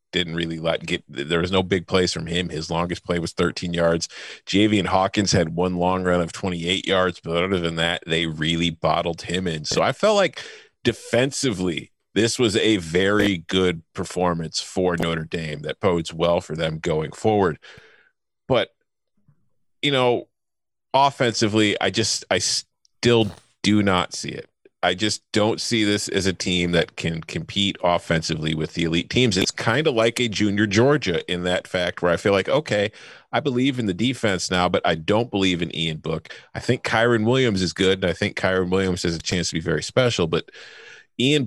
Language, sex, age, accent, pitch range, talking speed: English, male, 30-49, American, 85-110 Hz, 190 wpm